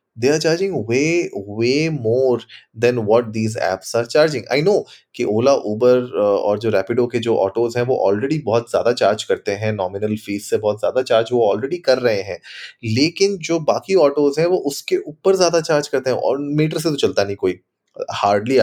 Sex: male